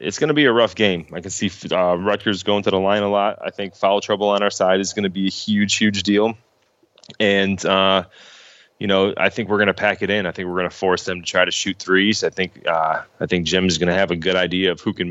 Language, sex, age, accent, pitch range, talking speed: English, male, 30-49, American, 85-100 Hz, 285 wpm